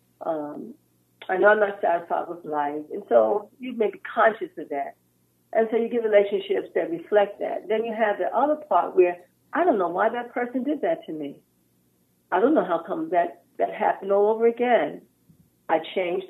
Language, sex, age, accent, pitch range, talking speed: English, female, 50-69, American, 165-275 Hz, 195 wpm